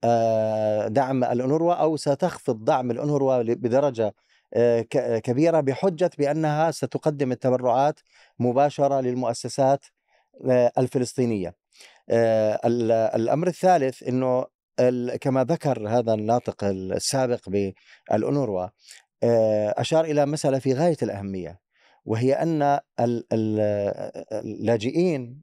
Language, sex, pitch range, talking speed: Arabic, male, 115-150 Hz, 80 wpm